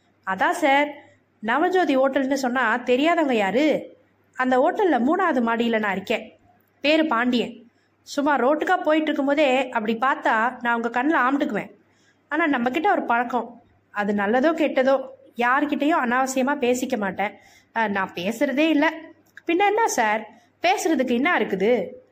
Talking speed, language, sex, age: 120 wpm, Tamil, female, 20-39